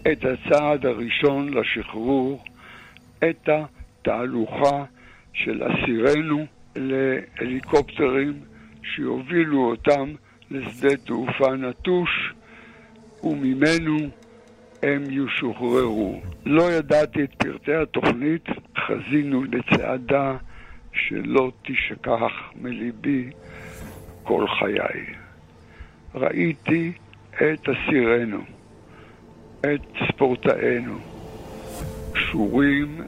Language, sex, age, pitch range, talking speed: Hebrew, male, 60-79, 120-150 Hz, 65 wpm